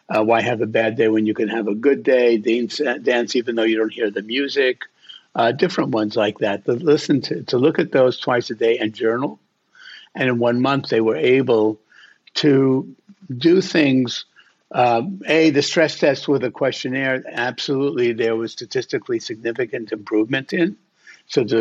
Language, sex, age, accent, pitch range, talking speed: English, male, 60-79, American, 110-140 Hz, 175 wpm